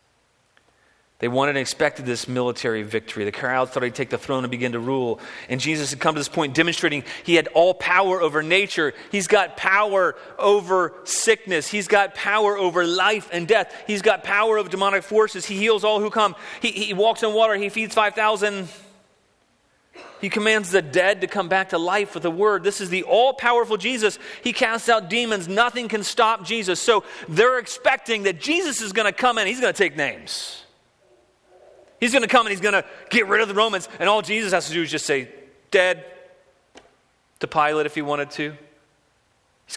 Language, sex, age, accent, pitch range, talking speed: English, male, 30-49, American, 140-210 Hz, 200 wpm